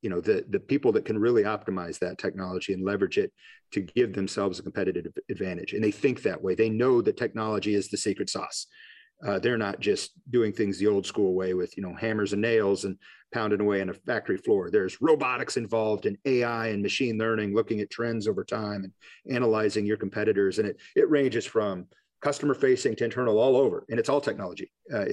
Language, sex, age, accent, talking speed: English, male, 40-59, American, 215 wpm